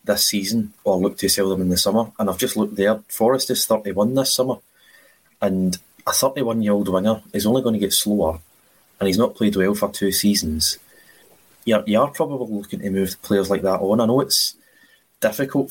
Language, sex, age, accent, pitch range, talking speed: English, male, 20-39, British, 95-110 Hz, 210 wpm